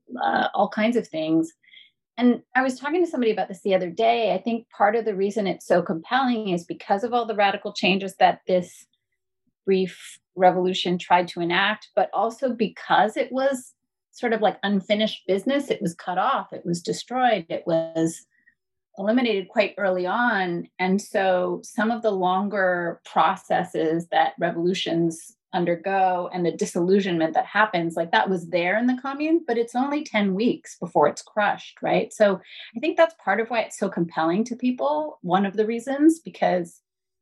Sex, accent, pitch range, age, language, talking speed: female, American, 175-235 Hz, 30-49, English, 175 wpm